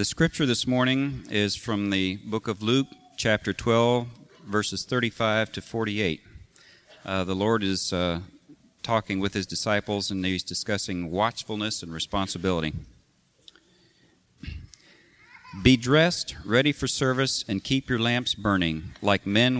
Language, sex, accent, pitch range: English, male, American, 95-120 Hz